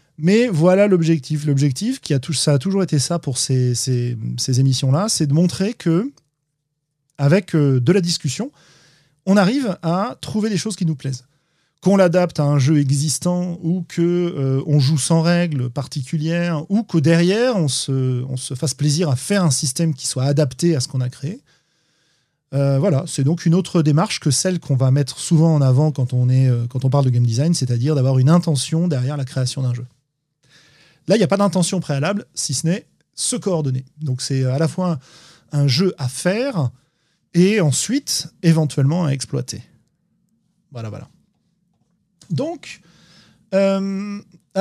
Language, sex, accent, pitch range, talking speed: French, male, French, 140-180 Hz, 170 wpm